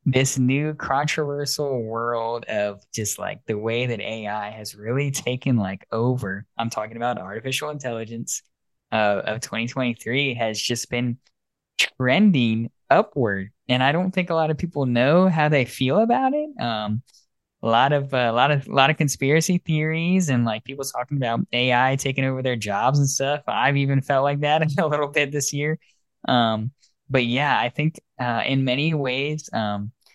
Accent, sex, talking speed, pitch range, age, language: American, male, 175 wpm, 110-140 Hz, 10-29, English